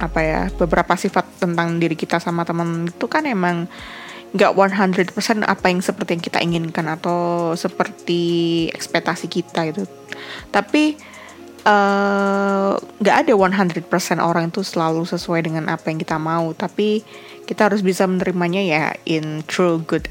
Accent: native